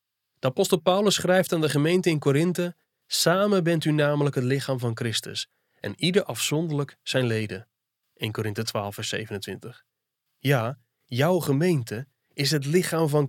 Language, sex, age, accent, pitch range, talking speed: Dutch, male, 20-39, Dutch, 130-170 Hz, 155 wpm